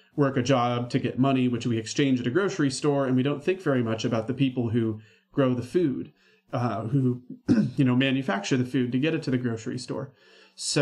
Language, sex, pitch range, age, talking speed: English, male, 125-150 Hz, 30-49, 225 wpm